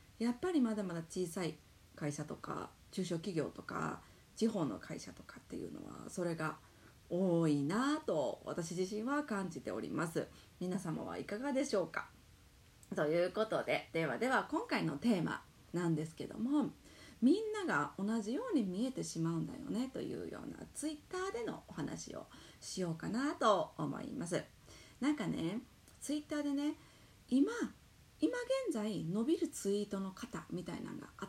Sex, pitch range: female, 185-280 Hz